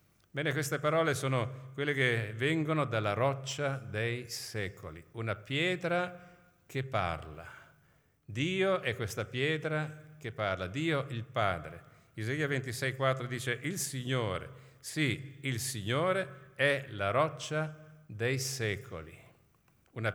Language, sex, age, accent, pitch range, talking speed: Italian, male, 50-69, native, 115-145 Hz, 115 wpm